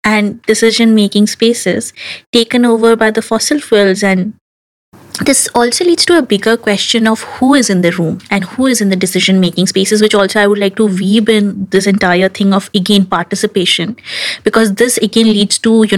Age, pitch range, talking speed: 20-39, 200-240 Hz, 190 wpm